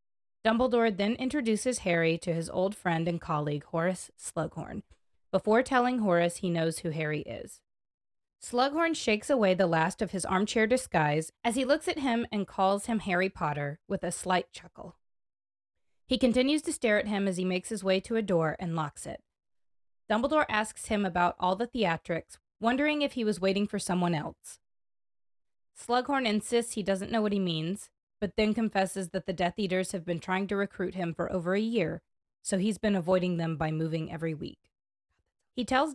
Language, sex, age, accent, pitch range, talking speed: English, female, 20-39, American, 170-220 Hz, 185 wpm